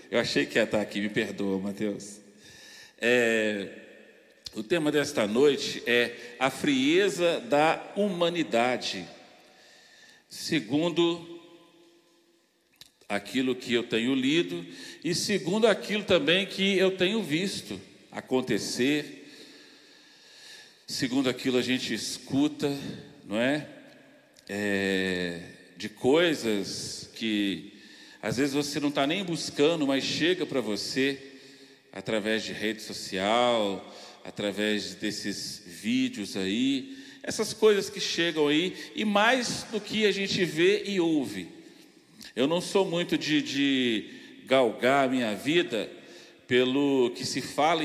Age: 50-69